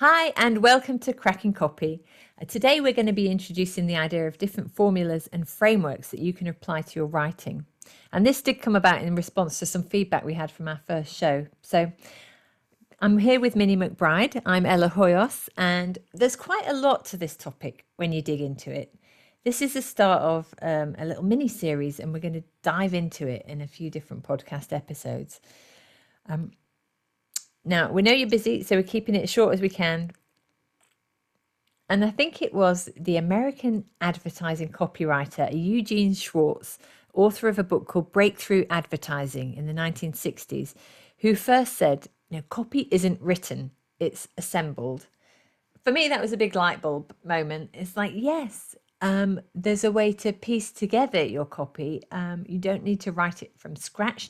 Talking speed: 180 wpm